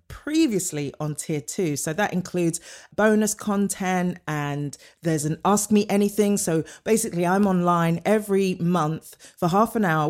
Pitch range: 165-235 Hz